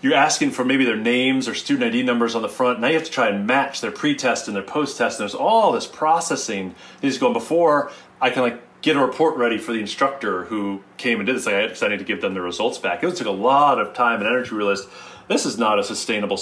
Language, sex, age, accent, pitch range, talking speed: English, male, 30-49, American, 100-160 Hz, 265 wpm